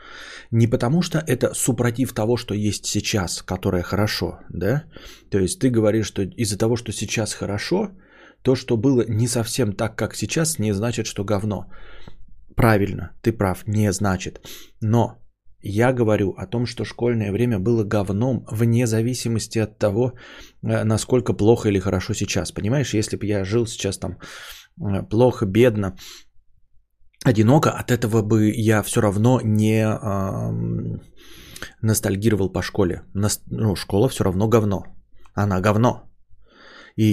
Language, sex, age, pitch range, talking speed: English, male, 20-39, 100-115 Hz, 140 wpm